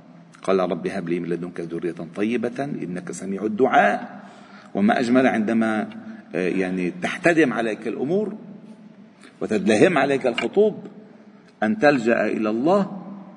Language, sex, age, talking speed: Arabic, male, 50-69, 110 wpm